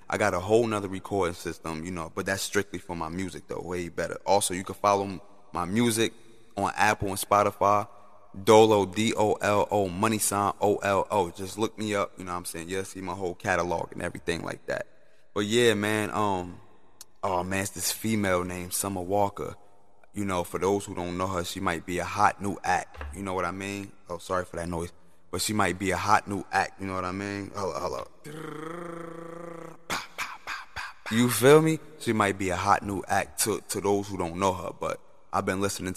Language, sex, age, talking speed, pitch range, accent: English, male, 20-39, 210 wpm, 90-105 Hz, American